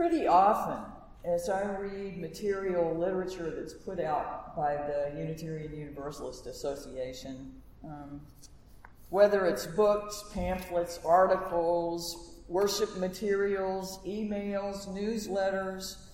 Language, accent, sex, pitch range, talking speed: English, American, female, 175-230 Hz, 95 wpm